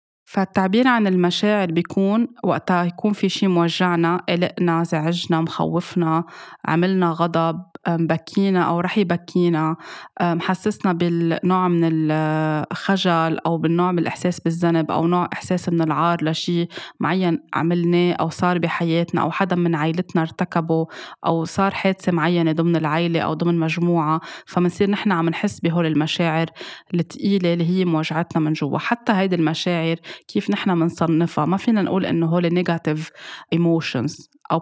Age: 20-39